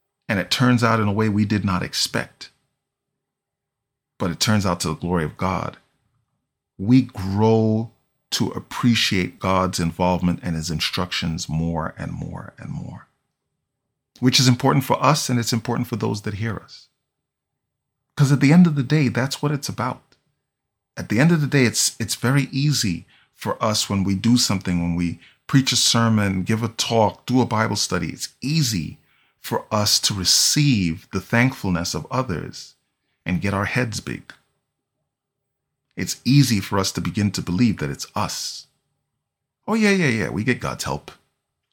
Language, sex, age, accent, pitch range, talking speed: English, male, 40-59, American, 100-135 Hz, 175 wpm